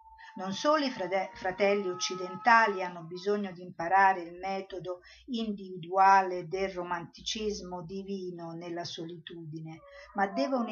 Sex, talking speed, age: female, 105 wpm, 50-69